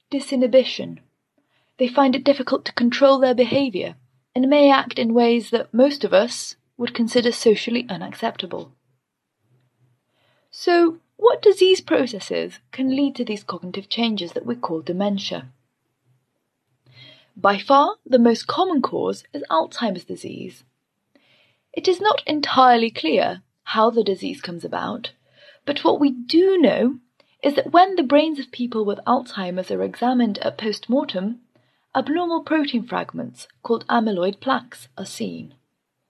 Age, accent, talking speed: 30-49, British, 135 wpm